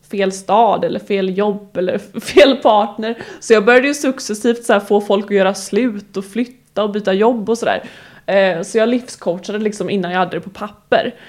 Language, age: English, 20-39